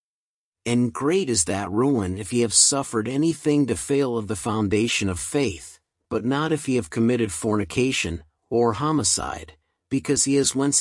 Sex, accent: male, American